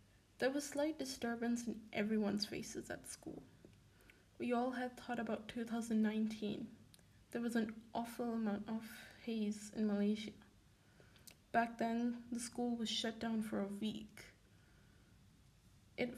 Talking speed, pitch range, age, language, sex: 130 wpm, 210-240 Hz, 10-29, English, female